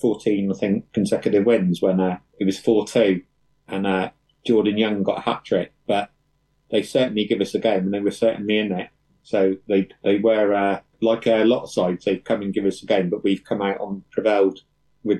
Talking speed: 215 wpm